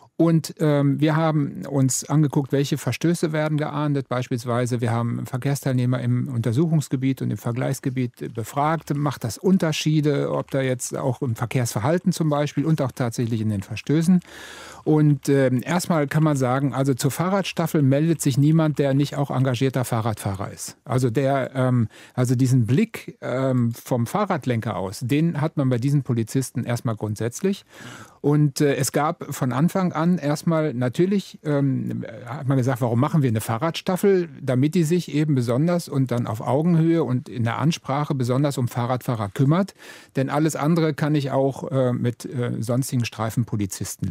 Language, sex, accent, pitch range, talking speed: German, male, German, 125-155 Hz, 160 wpm